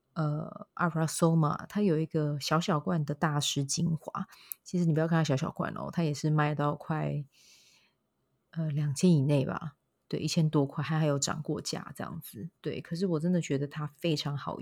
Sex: female